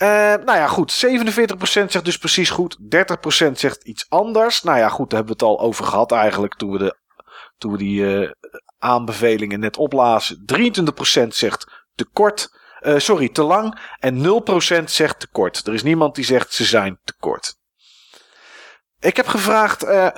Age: 40-59